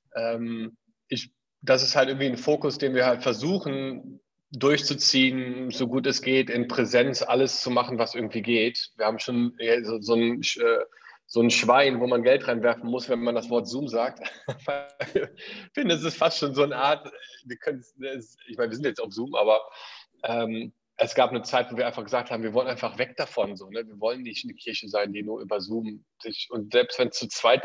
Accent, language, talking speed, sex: German, German, 215 wpm, male